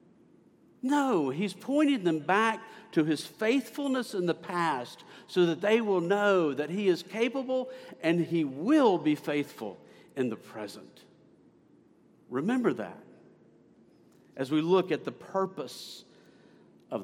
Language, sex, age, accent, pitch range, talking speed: English, male, 50-69, American, 160-225 Hz, 130 wpm